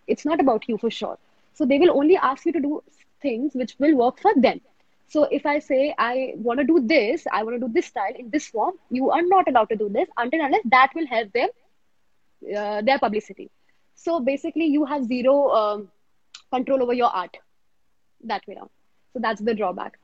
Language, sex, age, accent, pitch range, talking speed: English, female, 20-39, Indian, 220-290 Hz, 215 wpm